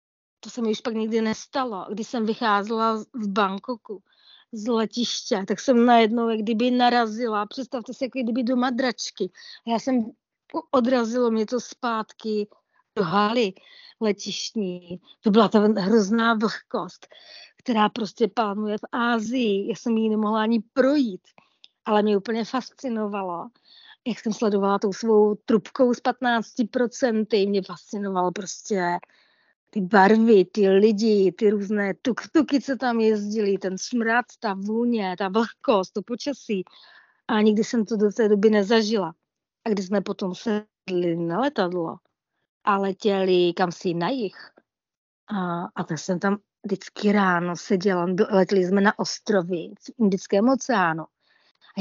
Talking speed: 140 wpm